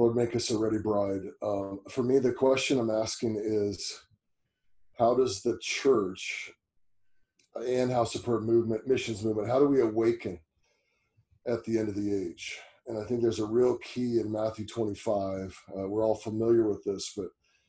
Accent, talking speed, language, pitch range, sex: American, 175 wpm, English, 105-125 Hz, male